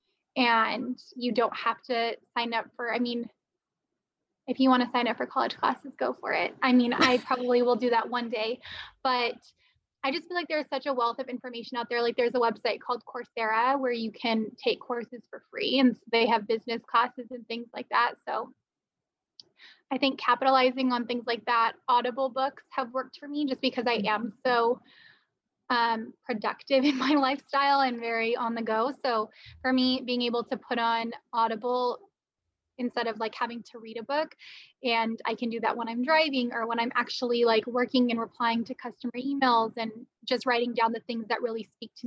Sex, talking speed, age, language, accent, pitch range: female, 200 wpm, 10-29, English, American, 230-260 Hz